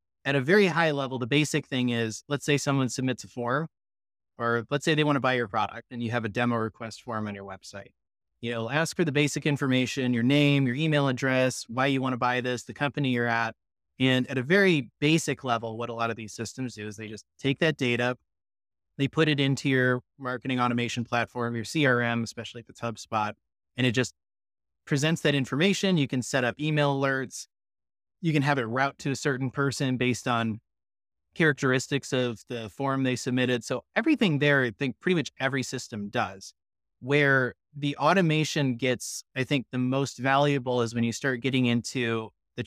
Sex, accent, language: male, American, English